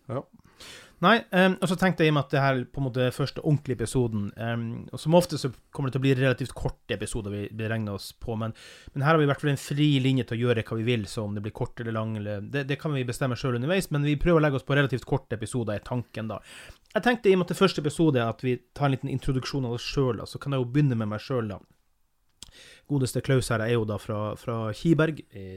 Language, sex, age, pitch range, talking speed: English, male, 30-49, 115-140 Hz, 265 wpm